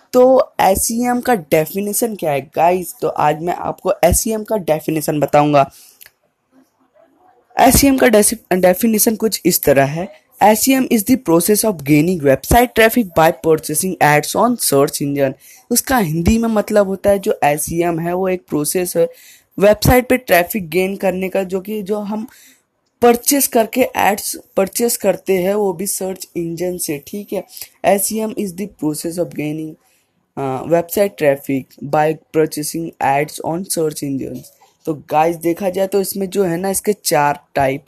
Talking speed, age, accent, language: 170 wpm, 20-39, native, Hindi